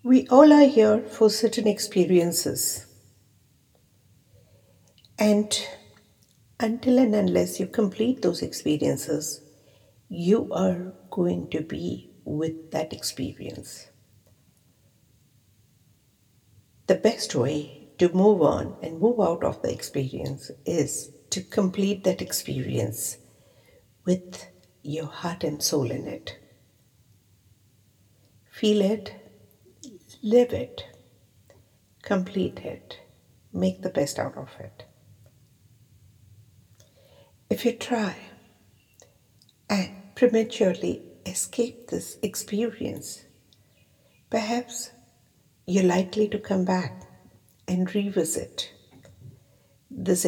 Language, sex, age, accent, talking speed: English, female, 60-79, Indian, 90 wpm